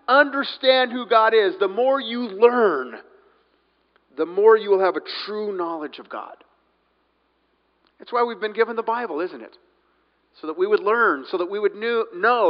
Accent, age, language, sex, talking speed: American, 50-69, English, male, 180 wpm